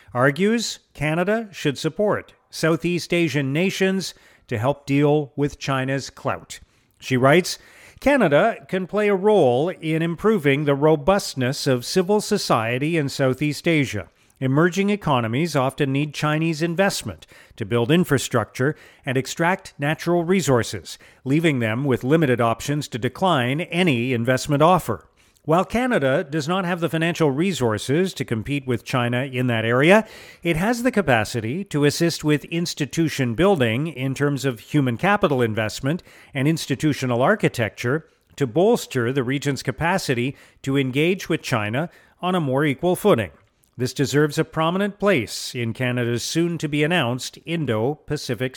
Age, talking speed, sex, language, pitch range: 40-59, 135 wpm, male, English, 125-175 Hz